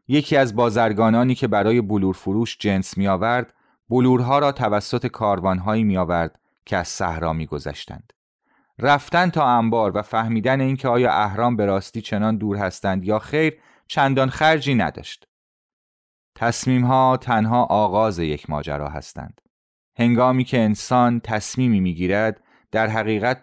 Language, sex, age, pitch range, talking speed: Persian, male, 30-49, 95-125 Hz, 125 wpm